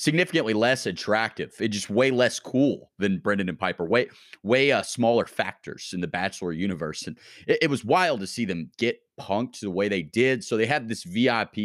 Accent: American